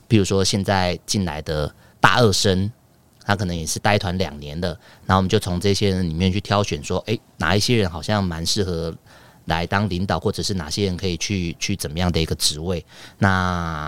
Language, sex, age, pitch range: Chinese, male, 30-49, 85-105 Hz